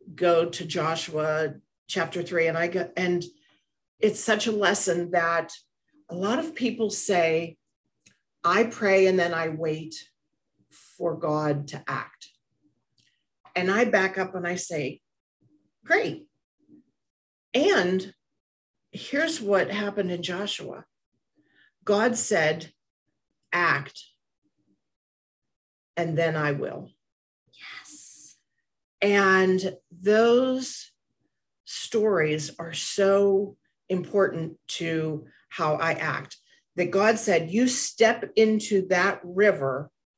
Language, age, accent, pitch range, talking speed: English, 40-59, American, 165-205 Hz, 100 wpm